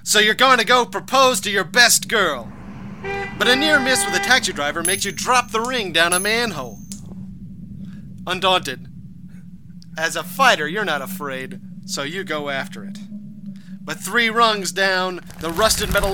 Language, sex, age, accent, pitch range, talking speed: English, male, 30-49, American, 170-205 Hz, 165 wpm